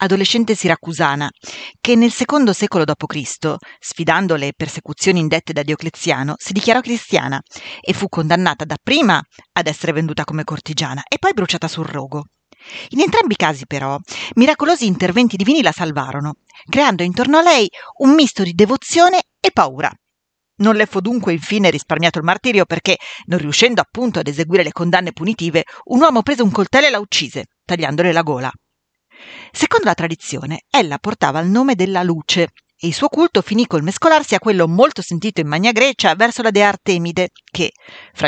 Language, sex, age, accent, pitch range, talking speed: Italian, female, 40-59, native, 165-235 Hz, 170 wpm